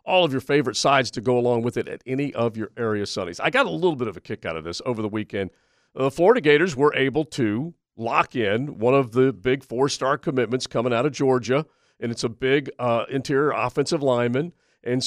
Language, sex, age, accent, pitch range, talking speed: English, male, 50-69, American, 115-140 Hz, 225 wpm